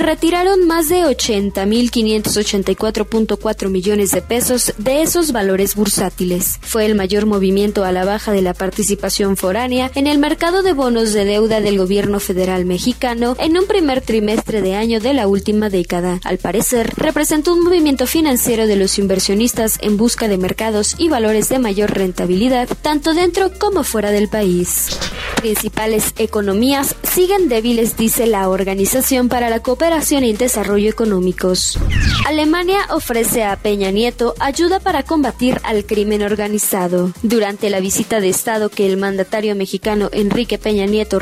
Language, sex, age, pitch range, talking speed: Spanish, female, 20-39, 200-255 Hz, 150 wpm